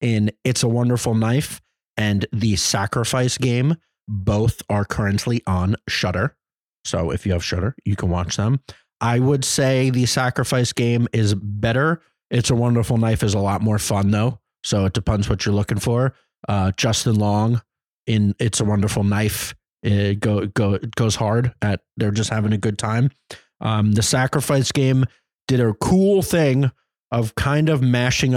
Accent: American